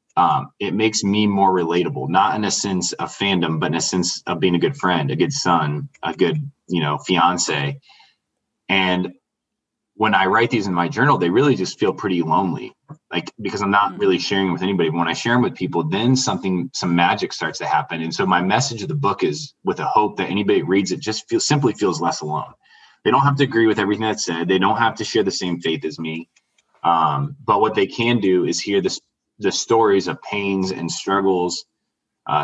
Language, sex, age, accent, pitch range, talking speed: English, male, 20-39, American, 85-110 Hz, 220 wpm